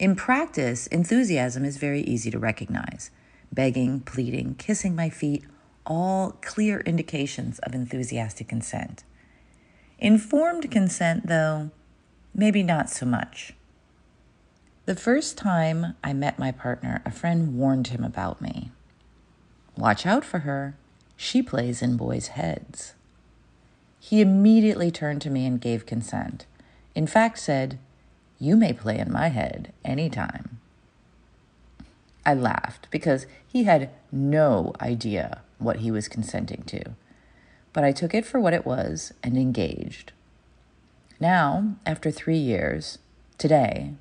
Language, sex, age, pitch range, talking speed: English, female, 40-59, 120-175 Hz, 130 wpm